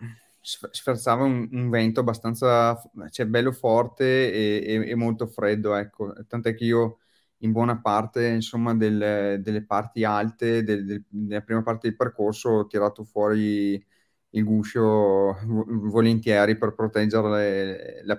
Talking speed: 120 wpm